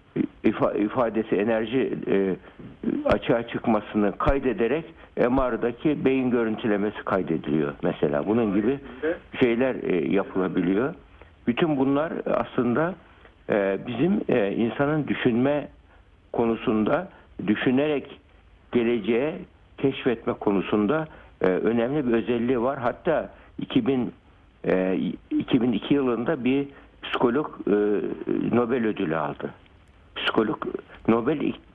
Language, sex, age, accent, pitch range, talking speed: Turkish, male, 60-79, native, 100-135 Hz, 75 wpm